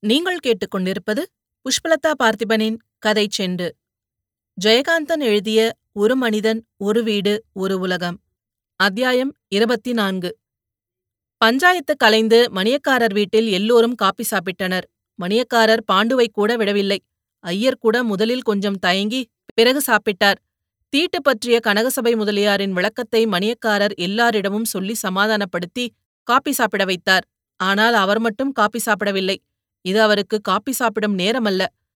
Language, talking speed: Tamil, 105 wpm